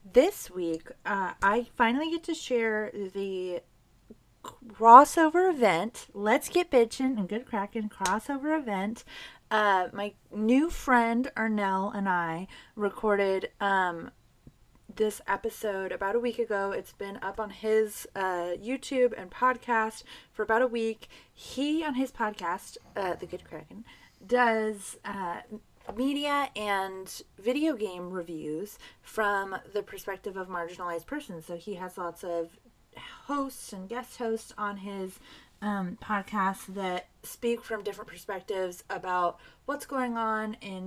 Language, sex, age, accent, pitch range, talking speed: English, female, 30-49, American, 190-240 Hz, 135 wpm